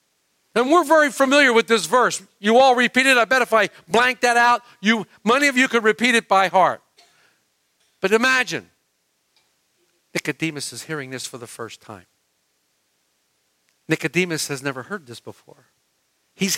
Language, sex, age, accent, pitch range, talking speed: English, male, 50-69, American, 175-265 Hz, 155 wpm